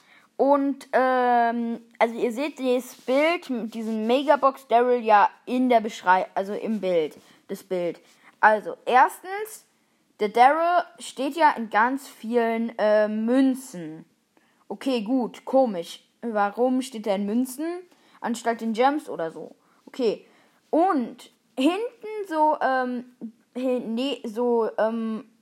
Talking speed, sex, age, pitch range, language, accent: 125 wpm, female, 20-39, 225-285 Hz, German, German